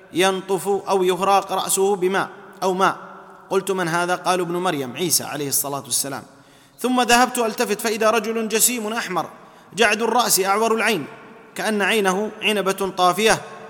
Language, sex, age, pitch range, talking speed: Arabic, male, 30-49, 190-230 Hz, 140 wpm